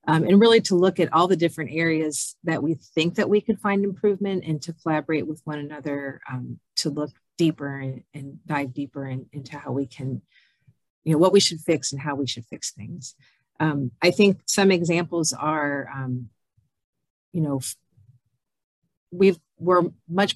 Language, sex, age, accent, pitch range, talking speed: English, female, 40-59, American, 140-165 Hz, 180 wpm